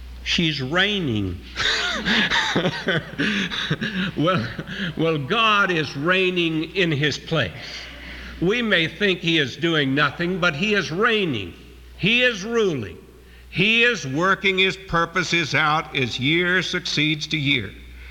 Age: 60-79